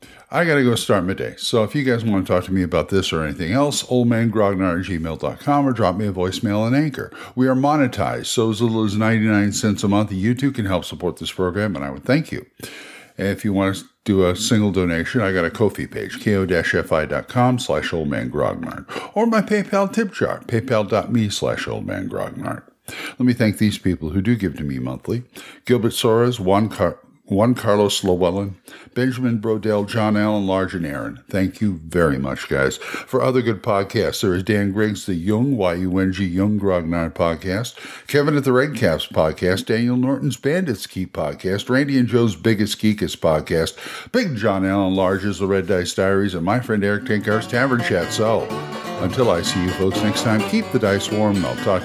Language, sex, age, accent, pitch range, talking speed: English, male, 50-69, American, 95-120 Hz, 195 wpm